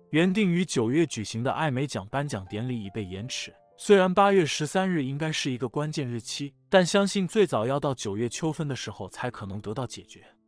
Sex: male